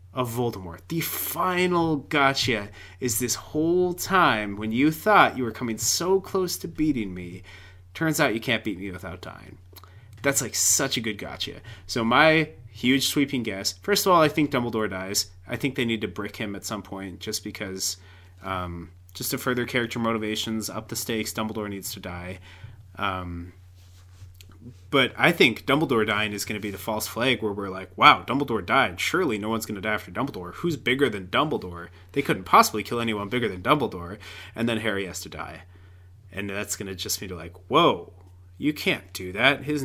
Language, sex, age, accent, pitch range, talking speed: English, male, 30-49, American, 95-125 Hz, 195 wpm